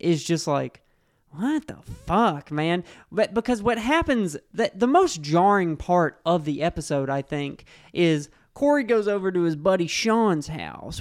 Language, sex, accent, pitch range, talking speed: English, male, American, 150-205 Hz, 165 wpm